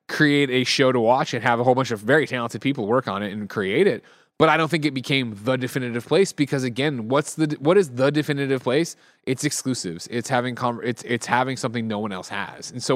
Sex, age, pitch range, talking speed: male, 20-39, 120-150 Hz, 245 wpm